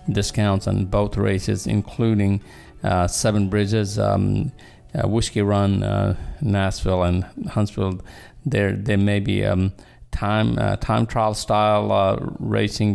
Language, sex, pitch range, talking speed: English, male, 90-105 Hz, 130 wpm